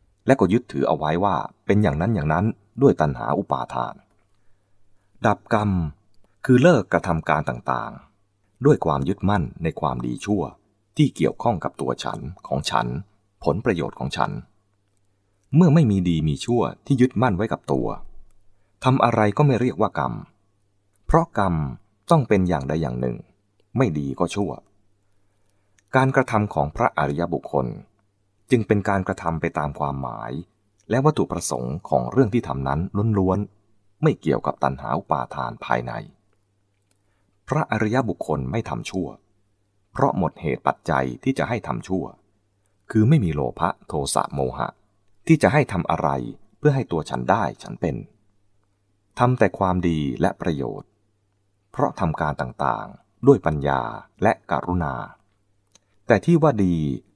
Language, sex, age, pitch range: English, male, 30-49, 85-105 Hz